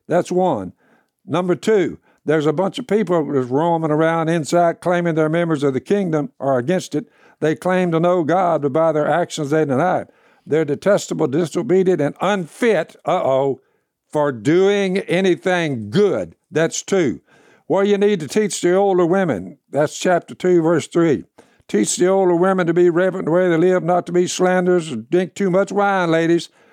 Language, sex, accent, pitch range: English, male, American, 165-195 Hz